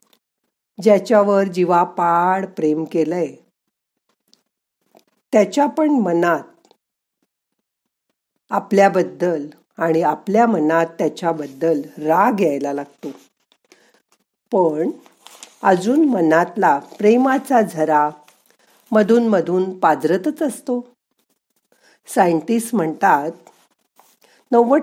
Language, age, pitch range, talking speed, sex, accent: Marathi, 50-69, 165-225 Hz, 65 wpm, female, native